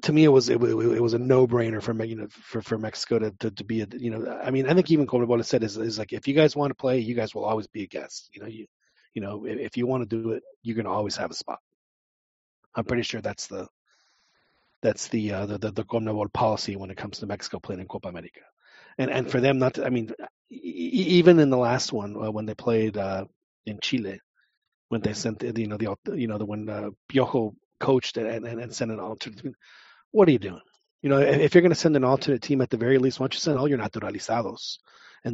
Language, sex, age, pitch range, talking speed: English, male, 30-49, 110-130 Hz, 255 wpm